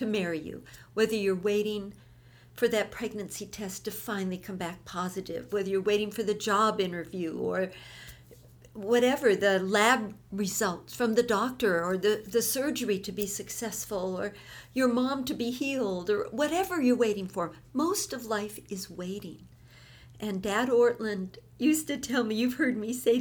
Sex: female